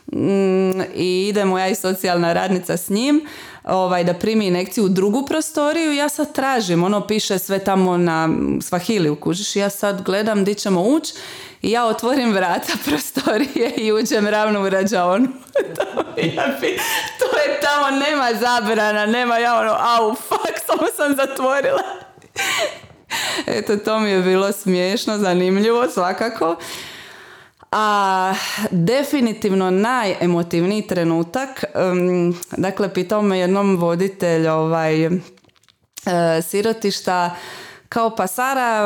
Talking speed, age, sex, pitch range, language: 120 wpm, 30-49, female, 180-235 Hz, Croatian